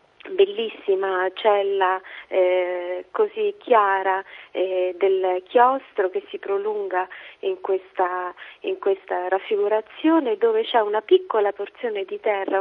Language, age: Italian, 30-49